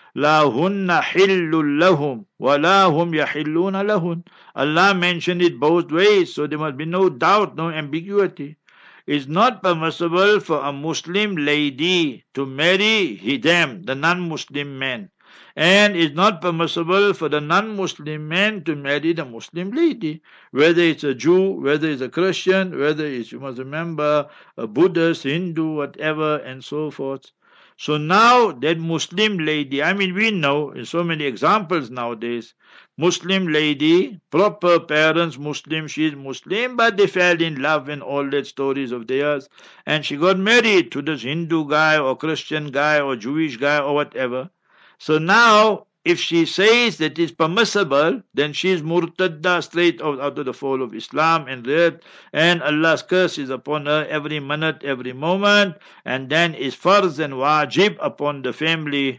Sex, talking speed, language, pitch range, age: male, 150 wpm, English, 145-180 Hz, 60-79